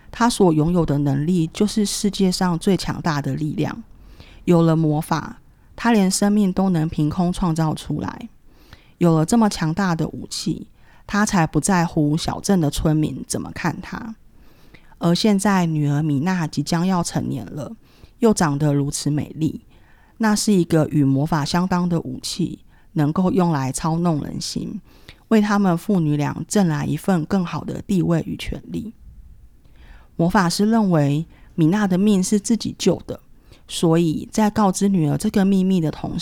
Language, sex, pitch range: Chinese, female, 150-195 Hz